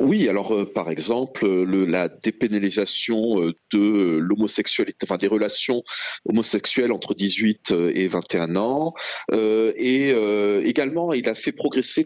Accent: French